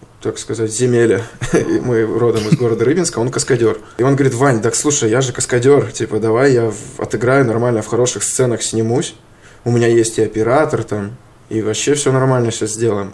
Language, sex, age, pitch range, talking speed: Russian, male, 20-39, 110-125 Hz, 185 wpm